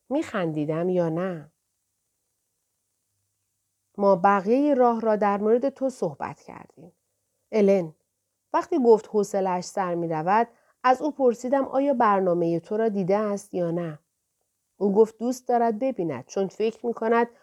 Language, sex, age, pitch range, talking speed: Persian, female, 40-59, 180-265 Hz, 125 wpm